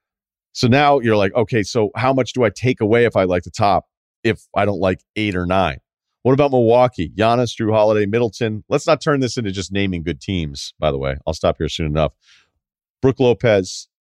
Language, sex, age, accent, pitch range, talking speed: English, male, 40-59, American, 95-120 Hz, 215 wpm